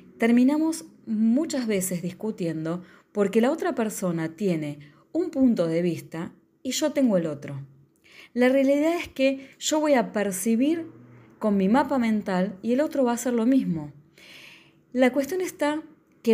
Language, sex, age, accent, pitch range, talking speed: Spanish, female, 20-39, Argentinian, 175-255 Hz, 155 wpm